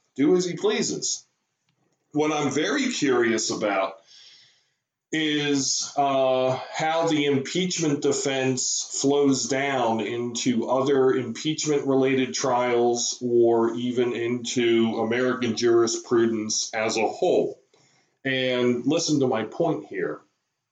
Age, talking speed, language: 40-59, 100 wpm, English